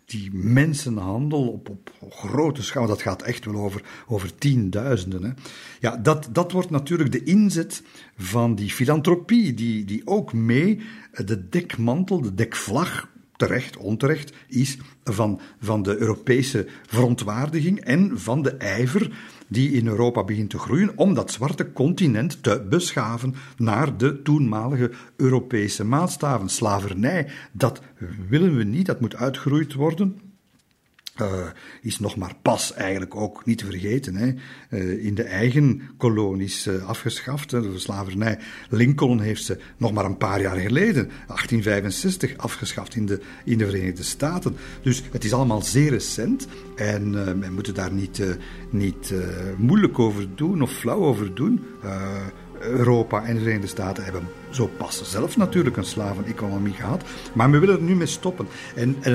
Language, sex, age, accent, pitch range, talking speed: Dutch, male, 50-69, Belgian, 100-140 Hz, 155 wpm